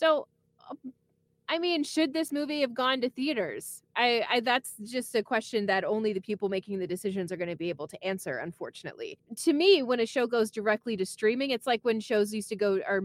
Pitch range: 190-245 Hz